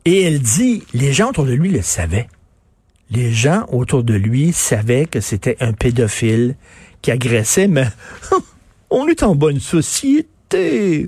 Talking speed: 150 wpm